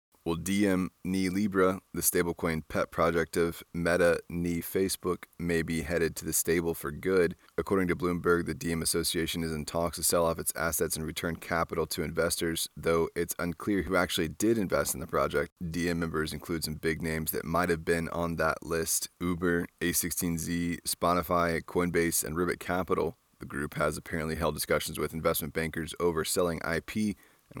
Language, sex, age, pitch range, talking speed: English, male, 20-39, 80-90 Hz, 180 wpm